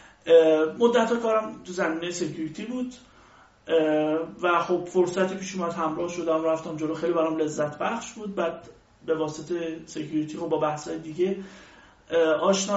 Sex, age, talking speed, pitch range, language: male, 30-49, 130 wpm, 160-210 Hz, Persian